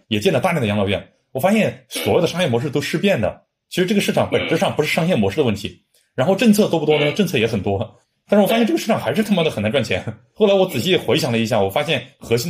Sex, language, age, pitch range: male, Chinese, 30-49, 110-185 Hz